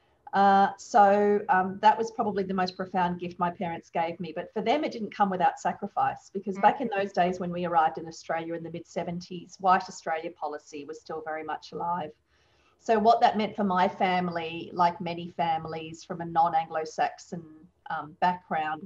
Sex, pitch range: female, 175-205 Hz